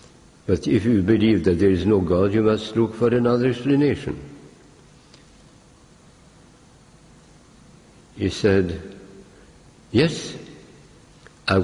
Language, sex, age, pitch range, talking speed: English, male, 60-79, 95-135 Hz, 100 wpm